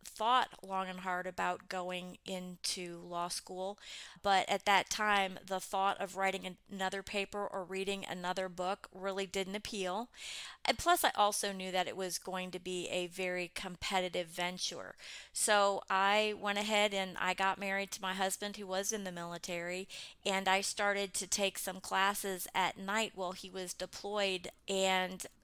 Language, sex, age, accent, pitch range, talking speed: English, female, 30-49, American, 185-200 Hz, 165 wpm